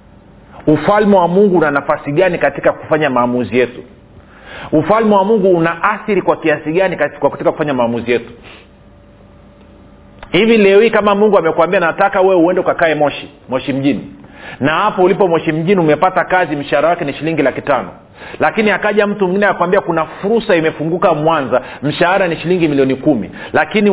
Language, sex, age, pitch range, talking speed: Swahili, male, 40-59, 140-195 Hz, 160 wpm